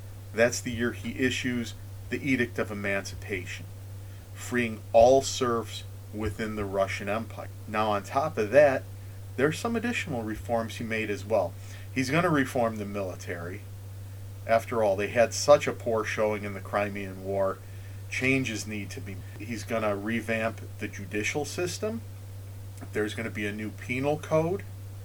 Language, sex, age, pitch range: English, male, 40-59, 100-120 Hz